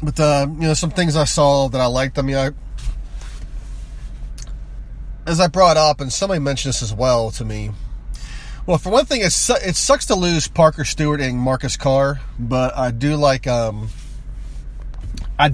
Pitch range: 95-150 Hz